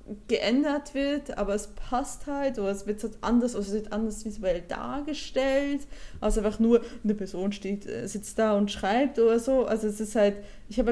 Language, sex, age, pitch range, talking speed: German, female, 20-39, 205-245 Hz, 185 wpm